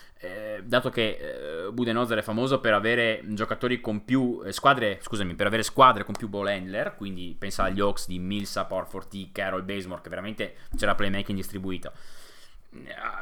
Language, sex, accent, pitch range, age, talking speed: Italian, male, native, 90-115 Hz, 20-39, 170 wpm